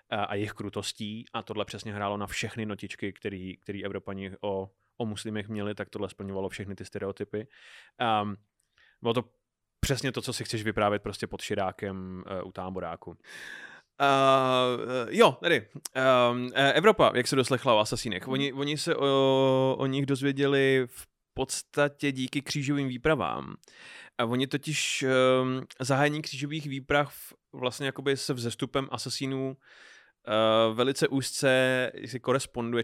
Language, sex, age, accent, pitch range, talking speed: Czech, male, 20-39, native, 105-135 Hz, 145 wpm